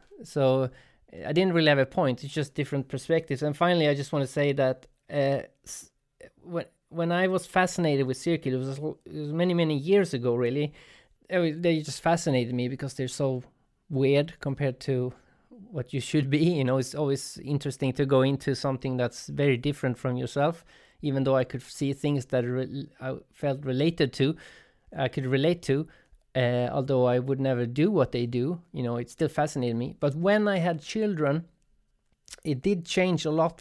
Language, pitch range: English, 135-165 Hz